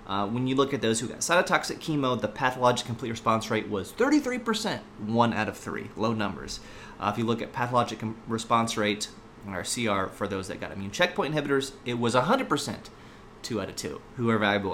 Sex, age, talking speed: male, 30-49, 205 wpm